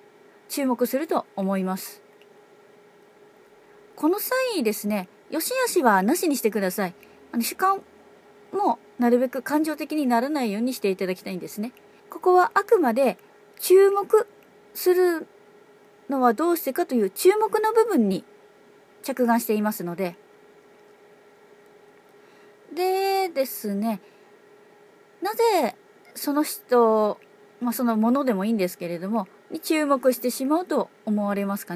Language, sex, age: Japanese, female, 30-49